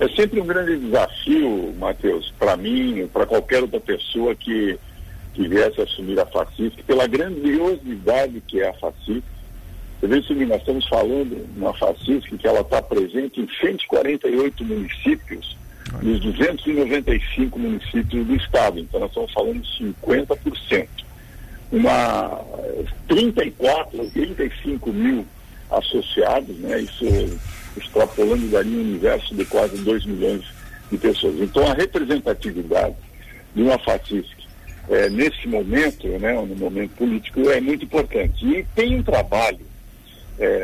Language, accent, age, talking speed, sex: Portuguese, Brazilian, 60-79, 130 wpm, male